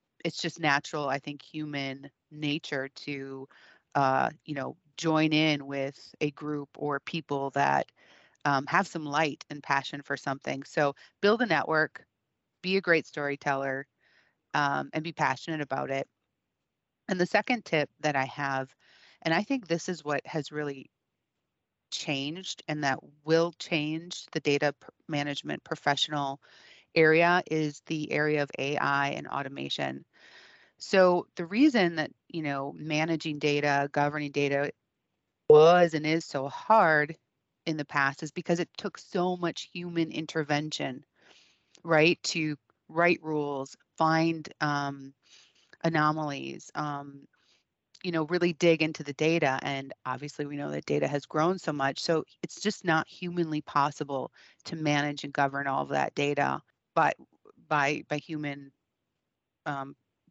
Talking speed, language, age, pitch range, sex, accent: 140 wpm, English, 30-49, 140-165 Hz, female, American